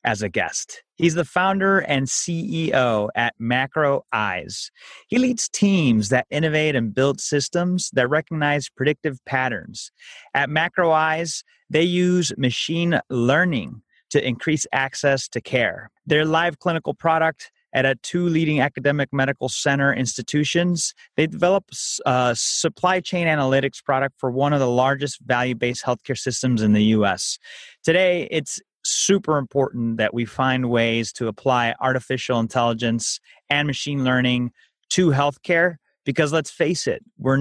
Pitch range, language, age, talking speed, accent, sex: 125-160 Hz, English, 30-49, 140 wpm, American, male